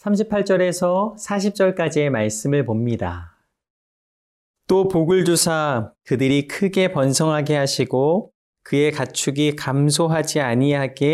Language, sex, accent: Korean, male, native